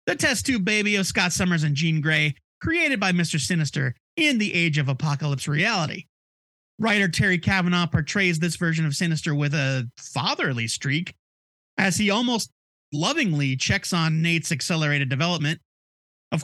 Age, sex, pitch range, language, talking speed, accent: 30-49, male, 150-230 Hz, English, 155 wpm, American